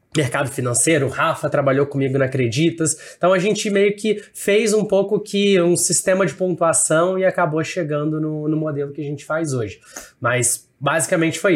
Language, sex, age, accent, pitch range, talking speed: Portuguese, male, 20-39, Brazilian, 155-210 Hz, 180 wpm